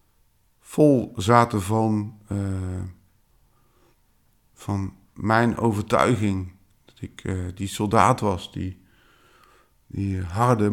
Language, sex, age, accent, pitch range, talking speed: Dutch, male, 50-69, Dutch, 95-115 Hz, 90 wpm